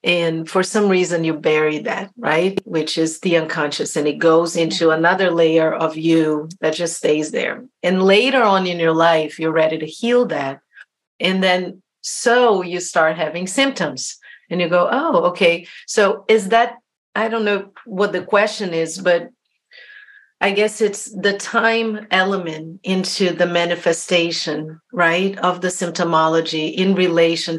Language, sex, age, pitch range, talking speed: English, female, 50-69, 165-195 Hz, 160 wpm